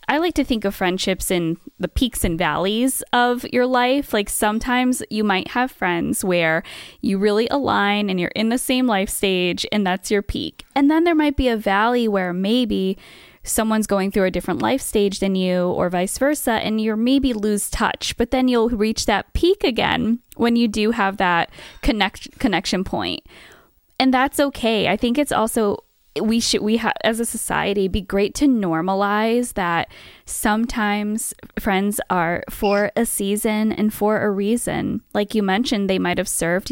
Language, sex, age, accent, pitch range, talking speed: English, female, 20-39, American, 185-235 Hz, 185 wpm